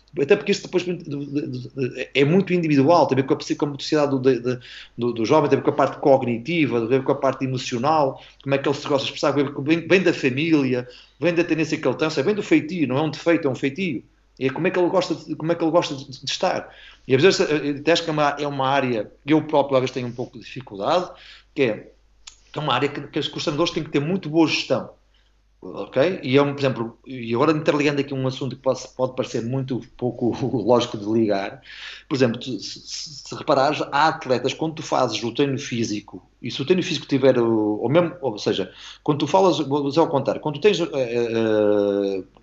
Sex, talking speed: male, 225 wpm